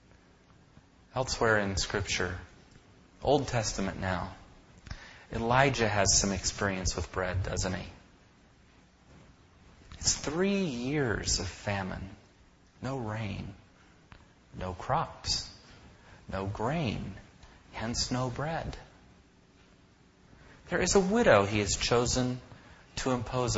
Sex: male